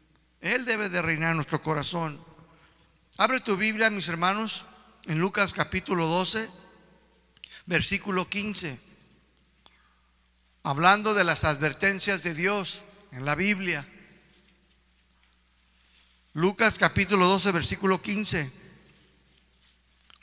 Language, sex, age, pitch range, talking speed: Spanish, male, 50-69, 140-210 Hz, 95 wpm